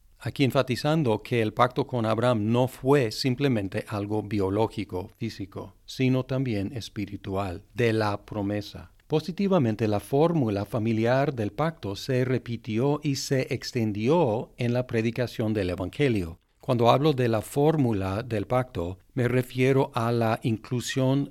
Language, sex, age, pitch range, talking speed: Spanish, male, 50-69, 105-130 Hz, 130 wpm